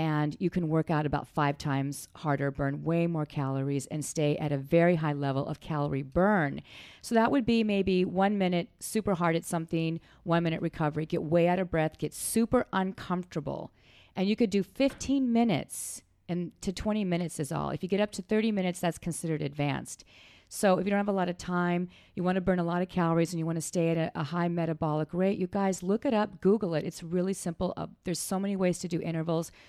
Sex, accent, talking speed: female, American, 230 wpm